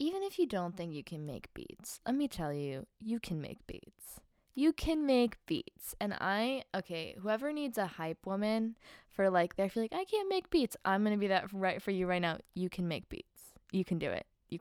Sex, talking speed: female, 235 wpm